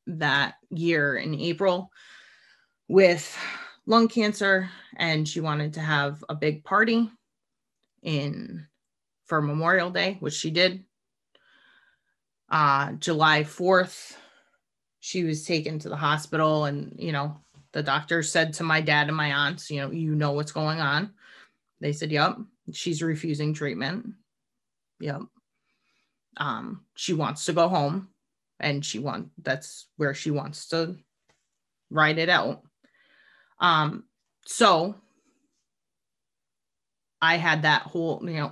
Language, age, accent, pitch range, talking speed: English, 30-49, American, 150-185 Hz, 130 wpm